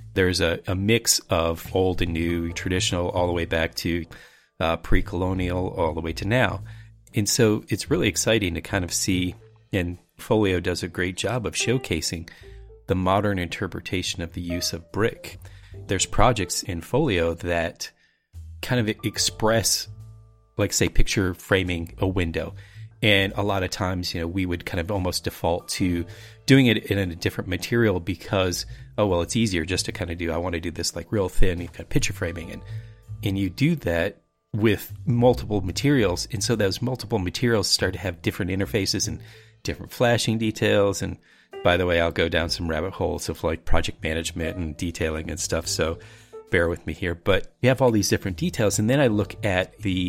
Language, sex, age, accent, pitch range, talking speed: English, male, 30-49, American, 85-110 Hz, 195 wpm